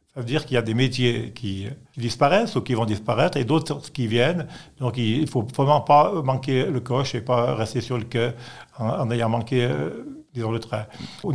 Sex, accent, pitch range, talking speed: male, French, 120-140 Hz, 220 wpm